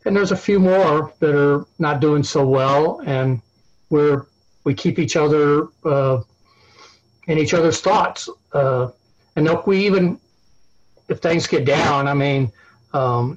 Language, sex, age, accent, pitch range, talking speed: English, male, 60-79, American, 135-170 Hz, 155 wpm